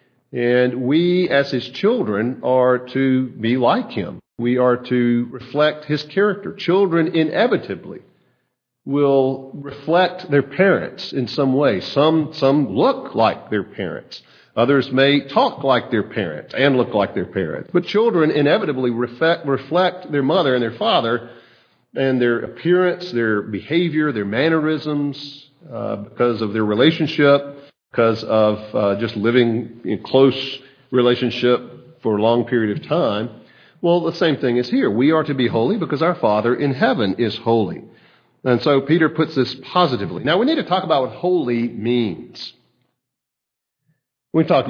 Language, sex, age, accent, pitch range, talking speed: English, male, 50-69, American, 115-150 Hz, 150 wpm